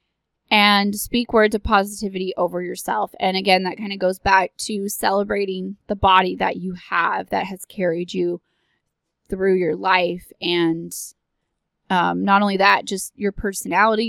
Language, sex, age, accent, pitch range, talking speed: English, female, 20-39, American, 185-235 Hz, 155 wpm